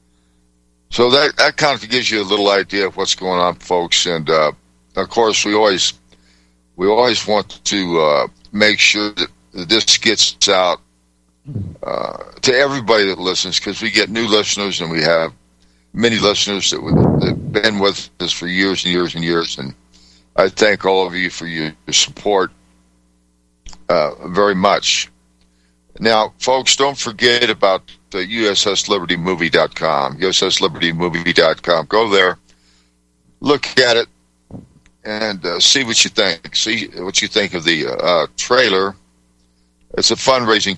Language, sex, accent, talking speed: English, male, American, 145 wpm